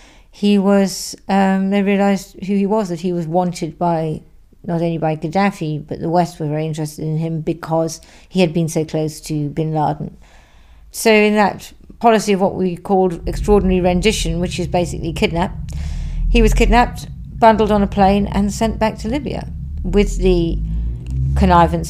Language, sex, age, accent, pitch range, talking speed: English, female, 50-69, British, 165-200 Hz, 175 wpm